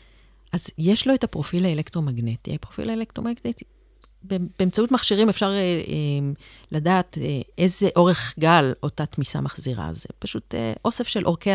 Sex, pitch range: female, 155-225 Hz